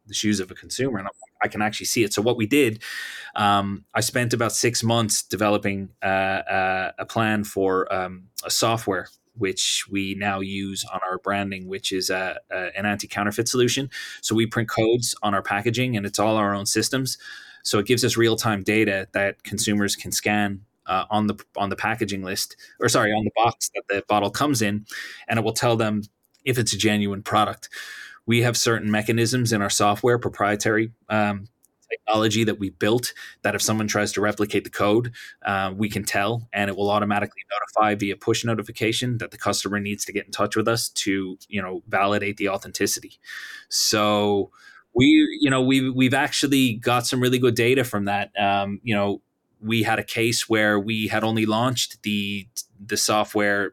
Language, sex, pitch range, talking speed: English, male, 100-115 Hz, 190 wpm